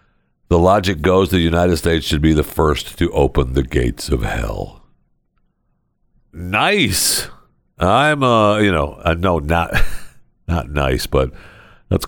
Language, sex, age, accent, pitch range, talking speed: English, male, 60-79, American, 75-100 Hz, 140 wpm